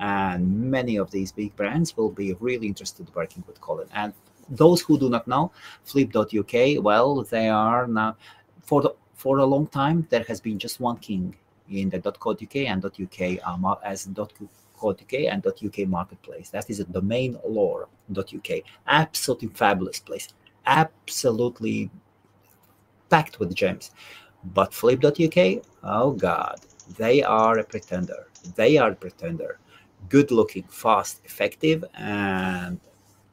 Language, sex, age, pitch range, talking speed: English, male, 30-49, 100-140 Hz, 135 wpm